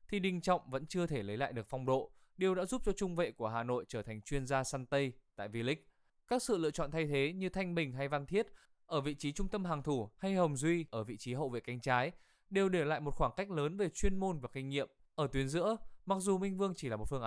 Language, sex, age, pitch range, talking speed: Vietnamese, male, 20-39, 130-180 Hz, 280 wpm